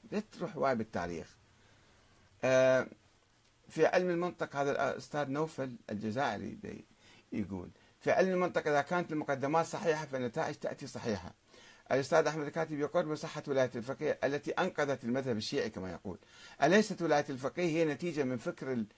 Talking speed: 130 wpm